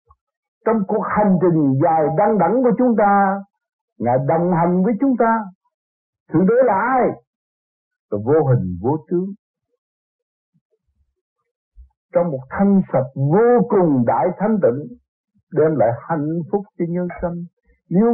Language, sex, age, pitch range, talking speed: Vietnamese, male, 60-79, 160-230 Hz, 130 wpm